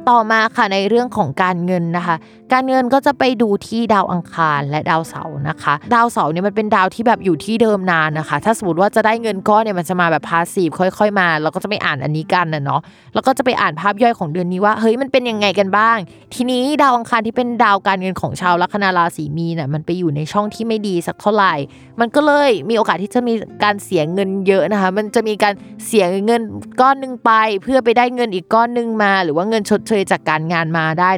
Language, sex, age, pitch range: Thai, female, 20-39, 165-220 Hz